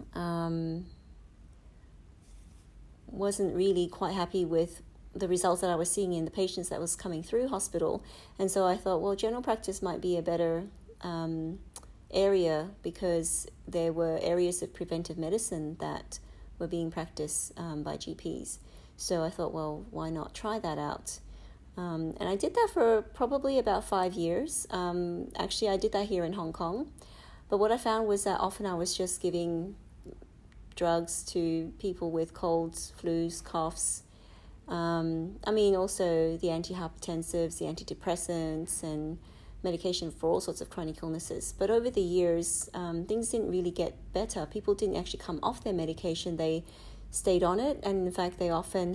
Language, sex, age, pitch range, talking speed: English, female, 40-59, 165-195 Hz, 165 wpm